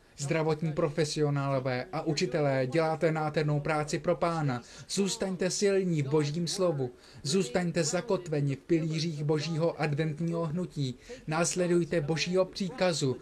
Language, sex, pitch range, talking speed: Slovak, male, 150-175 Hz, 110 wpm